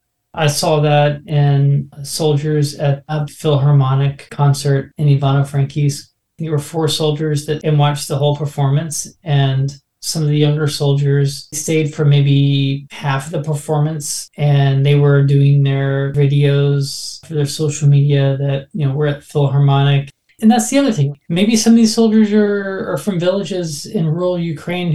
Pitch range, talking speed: 140-160 Hz, 160 wpm